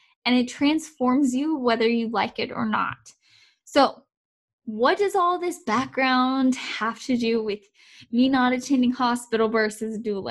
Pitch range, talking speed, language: 225-285 Hz, 165 wpm, English